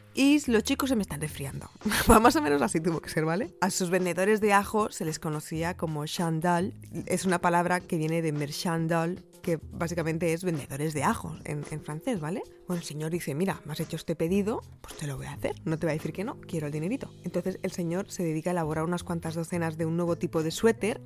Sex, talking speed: female, 240 wpm